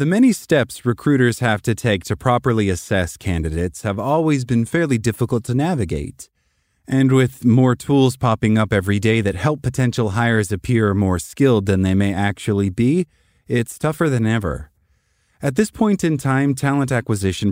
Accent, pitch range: American, 100-130 Hz